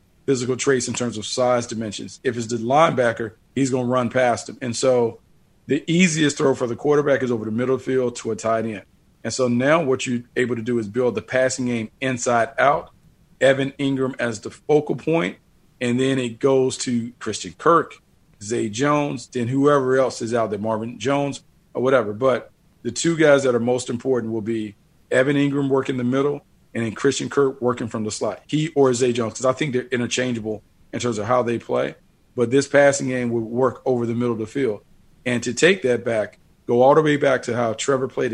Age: 40-59